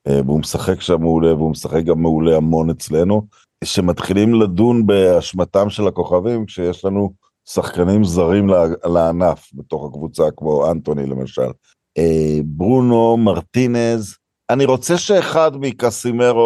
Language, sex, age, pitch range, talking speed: Hebrew, male, 50-69, 90-120 Hz, 115 wpm